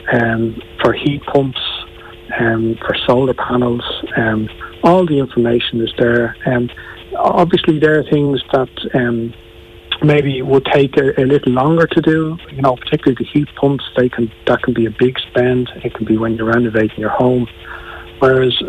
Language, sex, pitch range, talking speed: English, male, 115-135 Hz, 180 wpm